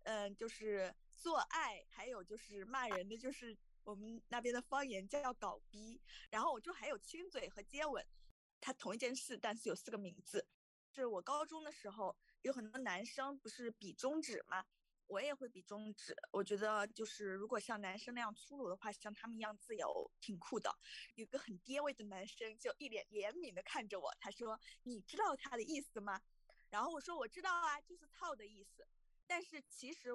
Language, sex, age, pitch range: Chinese, female, 20-39, 210-280 Hz